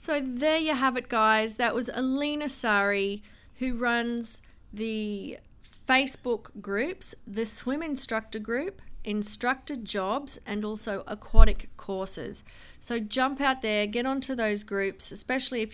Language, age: English, 30-49